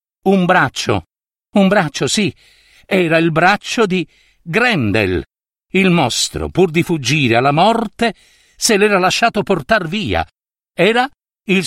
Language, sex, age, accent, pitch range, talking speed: Italian, male, 60-79, native, 130-190 Hz, 125 wpm